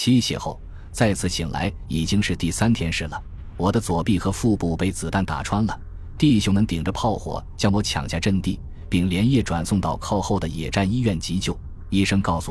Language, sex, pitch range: Chinese, male, 85-105 Hz